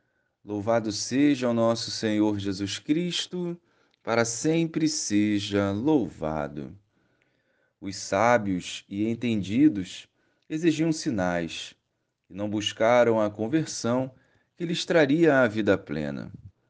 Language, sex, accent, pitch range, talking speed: Portuguese, male, Brazilian, 100-150 Hz, 100 wpm